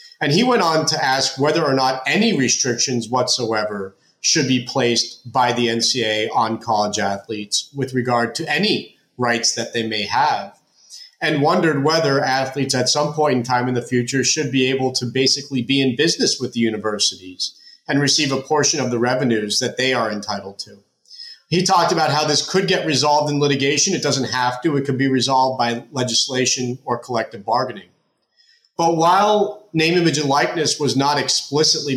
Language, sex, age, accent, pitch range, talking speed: English, male, 40-59, American, 120-150 Hz, 180 wpm